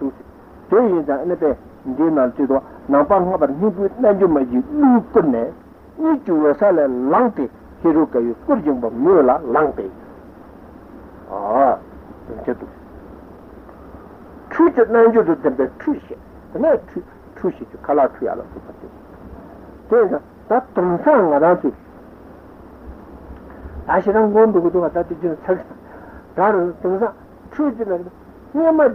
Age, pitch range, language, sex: 60-79, 170-270 Hz, Italian, male